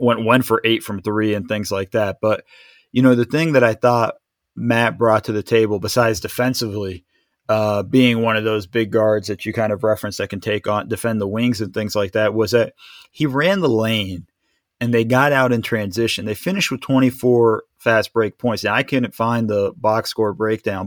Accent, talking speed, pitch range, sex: American, 215 wpm, 110-125 Hz, male